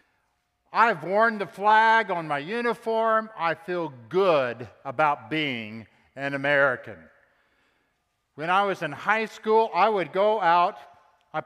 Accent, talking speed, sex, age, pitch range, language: American, 130 wpm, male, 50-69, 130-185 Hz, English